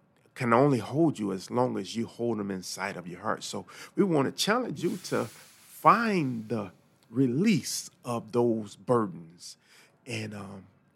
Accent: American